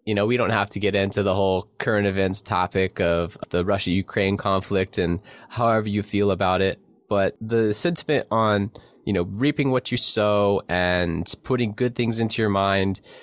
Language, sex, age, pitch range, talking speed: English, male, 20-39, 95-120 Hz, 180 wpm